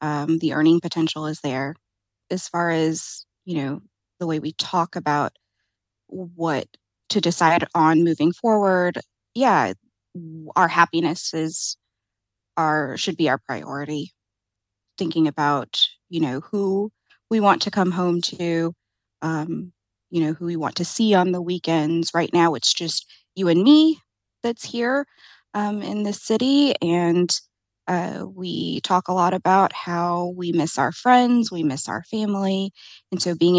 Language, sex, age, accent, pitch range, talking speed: English, female, 20-39, American, 155-185 Hz, 150 wpm